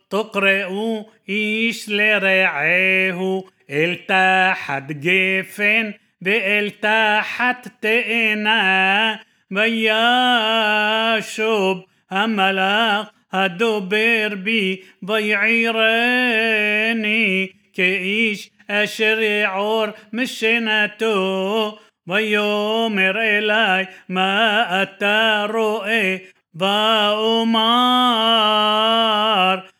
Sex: male